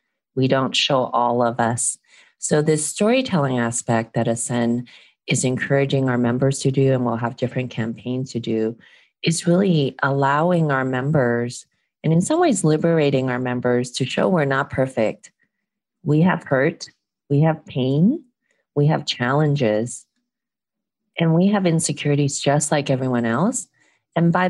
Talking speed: 150 wpm